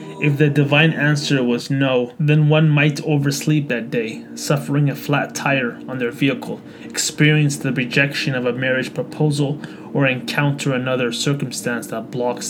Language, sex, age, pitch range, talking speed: English, male, 20-39, 125-150 Hz, 155 wpm